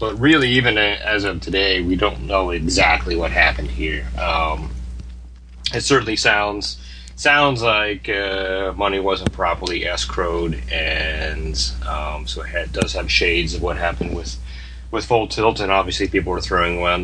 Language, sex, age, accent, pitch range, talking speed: English, male, 30-49, American, 70-95 Hz, 160 wpm